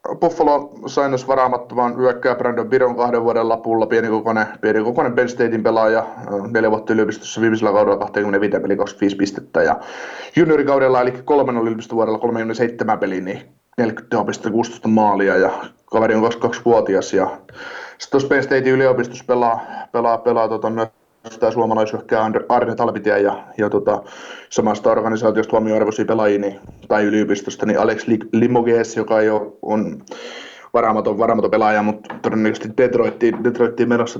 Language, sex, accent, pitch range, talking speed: Finnish, male, native, 110-125 Hz, 135 wpm